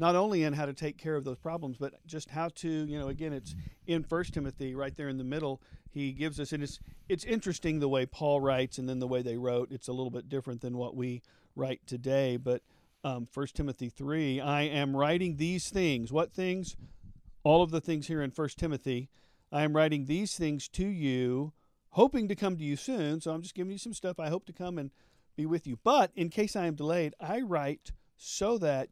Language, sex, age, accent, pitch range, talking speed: English, male, 50-69, American, 125-155 Hz, 230 wpm